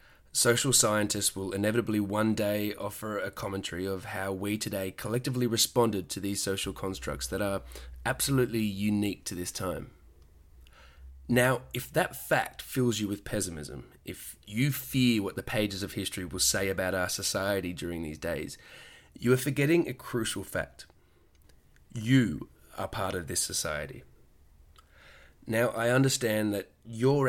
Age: 20-39